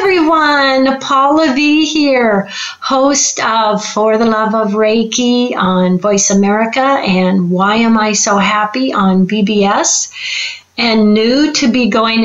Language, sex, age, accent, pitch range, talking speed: English, female, 40-59, American, 205-270 Hz, 130 wpm